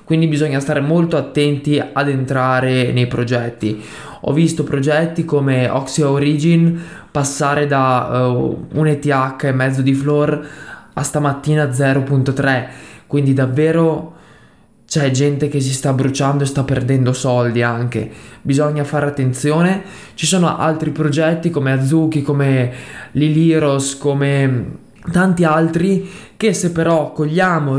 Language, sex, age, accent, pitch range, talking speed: Italian, male, 20-39, native, 135-160 Hz, 125 wpm